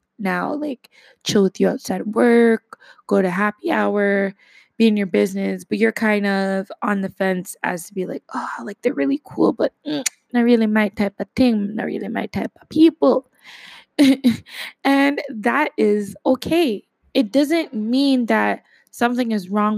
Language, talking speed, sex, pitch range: English, 165 wpm, female, 200-255 Hz